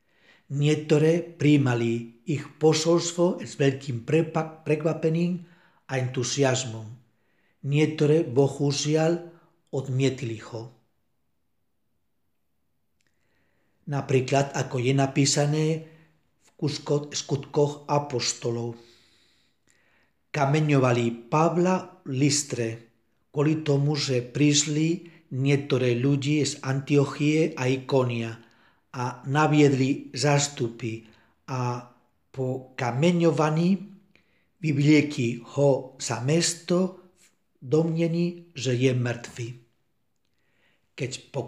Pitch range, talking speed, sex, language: 125-160 Hz, 70 wpm, male, Czech